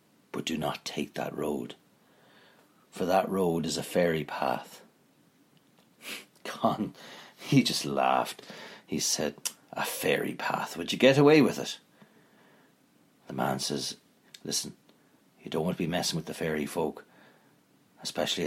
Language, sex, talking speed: English, male, 140 wpm